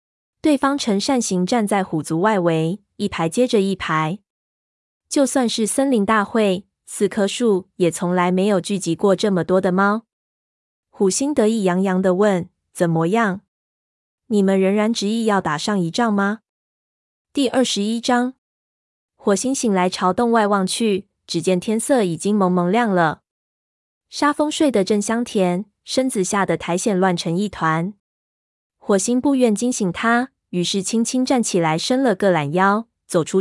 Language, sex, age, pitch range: Chinese, female, 20-39, 180-230 Hz